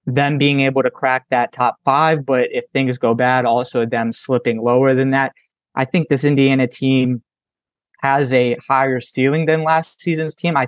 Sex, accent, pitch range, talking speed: male, American, 125-140 Hz, 185 wpm